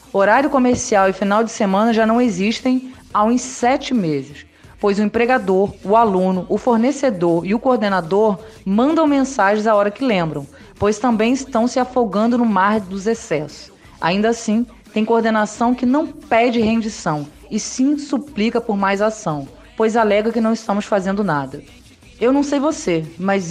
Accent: Brazilian